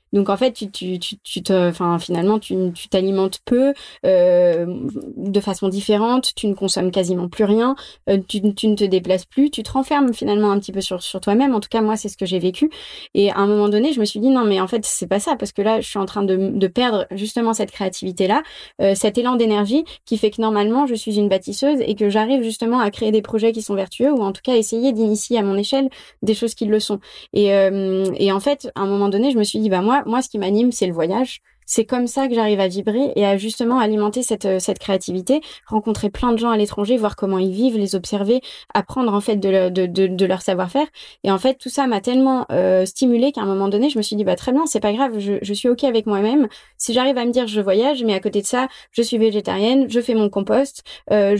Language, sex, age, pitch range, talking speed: French, female, 20-39, 200-245 Hz, 260 wpm